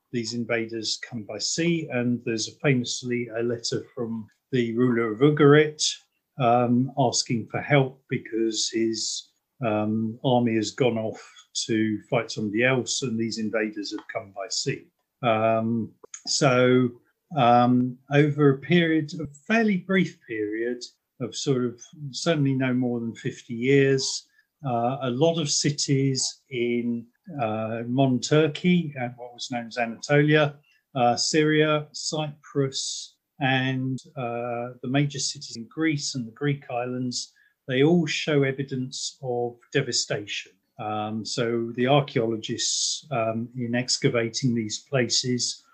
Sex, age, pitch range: male, 40-59, 115-140 Hz